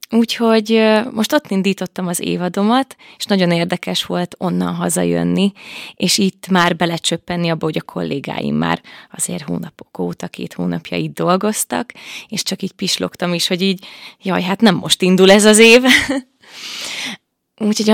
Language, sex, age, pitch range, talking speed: Hungarian, female, 20-39, 175-215 Hz, 145 wpm